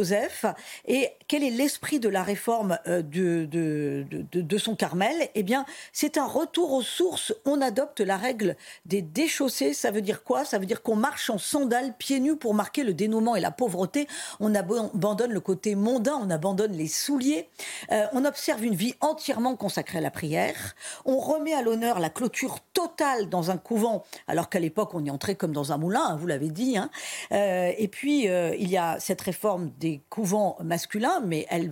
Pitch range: 180-255 Hz